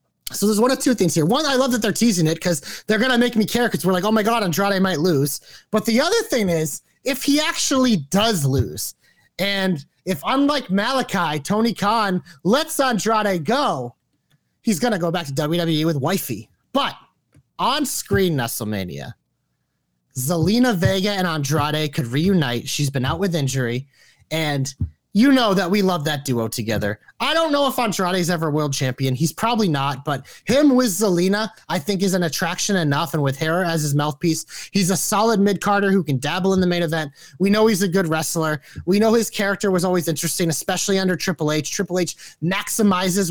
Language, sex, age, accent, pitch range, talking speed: English, male, 30-49, American, 160-220 Hz, 195 wpm